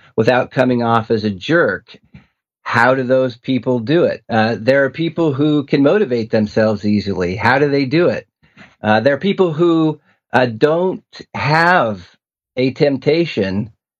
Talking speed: 155 wpm